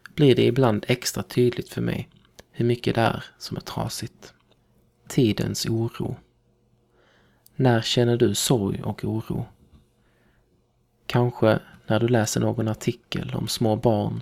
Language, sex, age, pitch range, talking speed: Swedish, male, 20-39, 110-120 Hz, 125 wpm